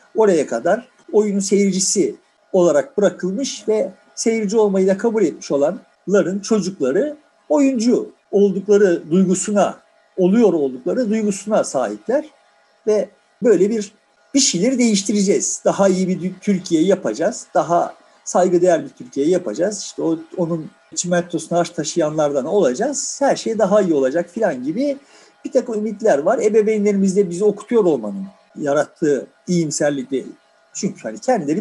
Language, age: Turkish, 50-69